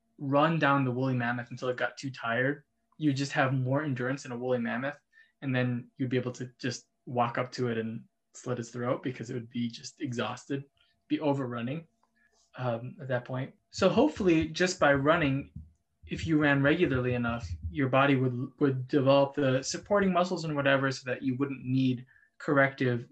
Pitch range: 120-145 Hz